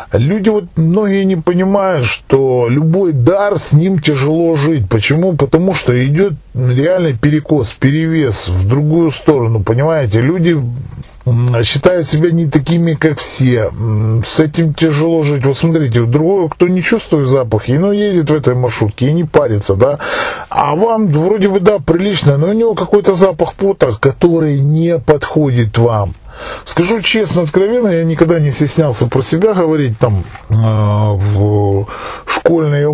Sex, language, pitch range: male, Russian, 115-165 Hz